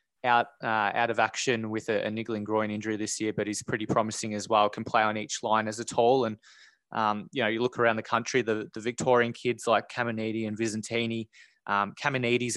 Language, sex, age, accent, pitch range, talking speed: English, male, 20-39, Australian, 110-125 Hz, 220 wpm